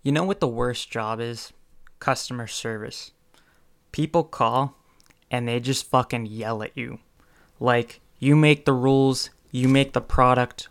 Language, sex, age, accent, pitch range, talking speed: English, male, 20-39, American, 115-140 Hz, 150 wpm